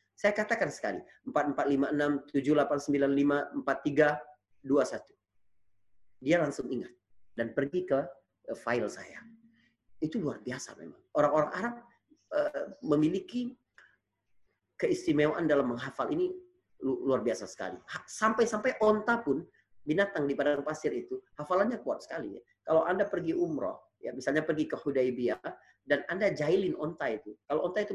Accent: native